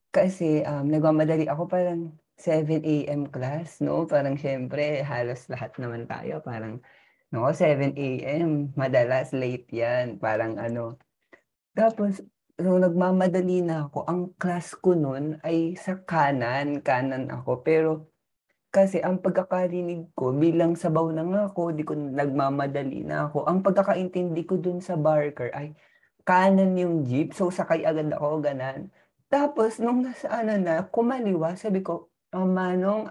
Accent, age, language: native, 20-39, Filipino